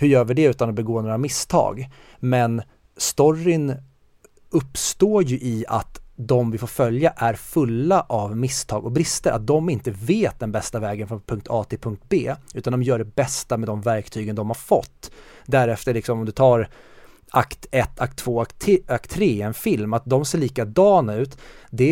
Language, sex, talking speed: Swedish, male, 185 wpm